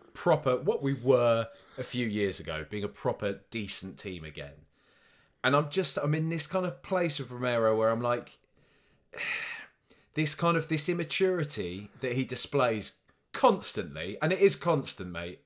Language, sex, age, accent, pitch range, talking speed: English, male, 30-49, British, 105-140 Hz, 165 wpm